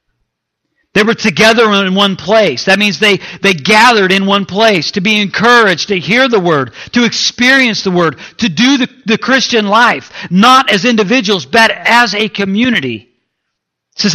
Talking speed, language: 170 wpm, English